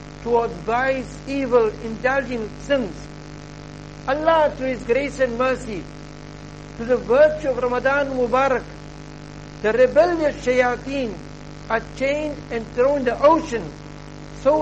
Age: 60-79